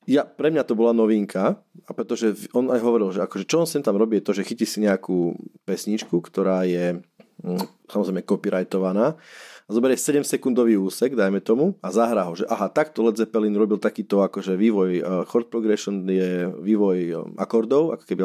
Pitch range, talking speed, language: 95-115 Hz, 185 wpm, Slovak